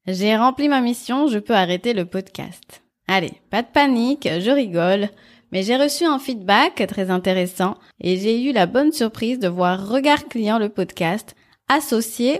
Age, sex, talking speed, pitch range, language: 20-39, female, 170 wpm, 190-260 Hz, French